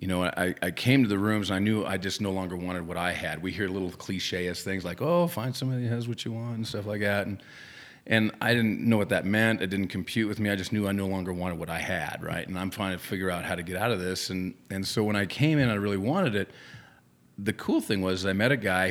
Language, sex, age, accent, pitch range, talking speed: English, male, 40-59, American, 95-110 Hz, 295 wpm